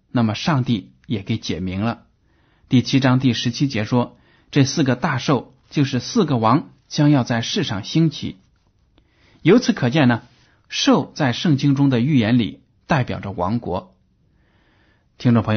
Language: Chinese